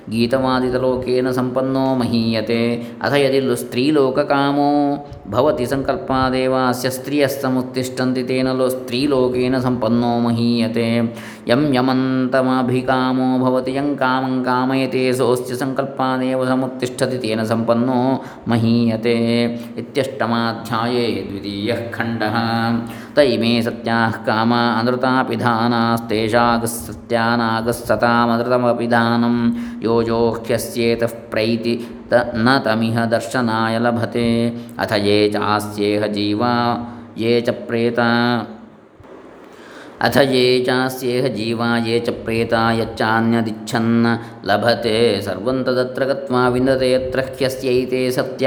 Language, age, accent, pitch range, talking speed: Kannada, 20-39, native, 115-130 Hz, 60 wpm